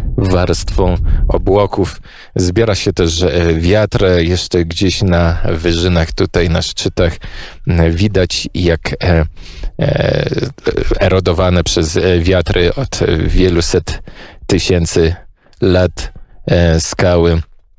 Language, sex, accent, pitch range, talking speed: Polish, male, native, 80-90 Hz, 80 wpm